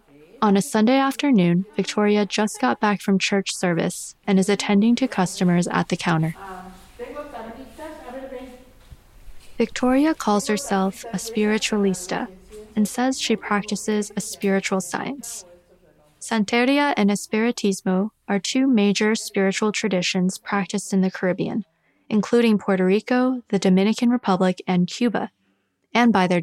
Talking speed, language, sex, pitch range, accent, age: 125 wpm, English, female, 185-225 Hz, American, 20-39